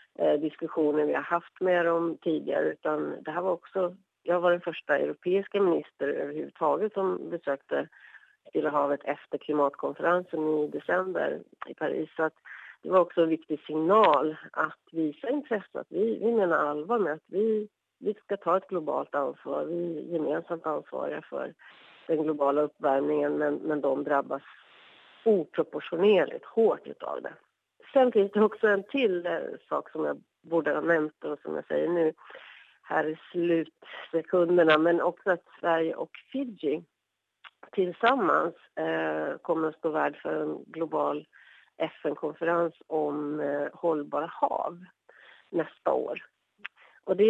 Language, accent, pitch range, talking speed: English, Swedish, 150-190 Hz, 140 wpm